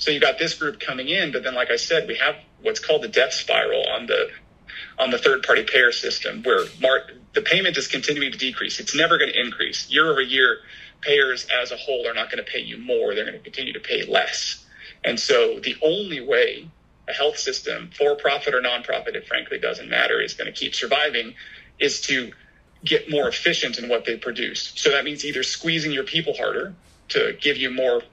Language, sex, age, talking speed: English, male, 30-49, 220 wpm